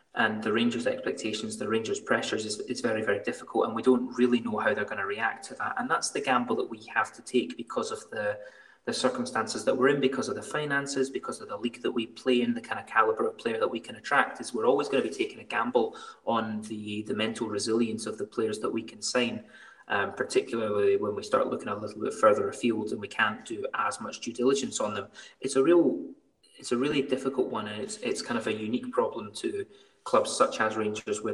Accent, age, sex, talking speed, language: British, 20-39, male, 245 wpm, English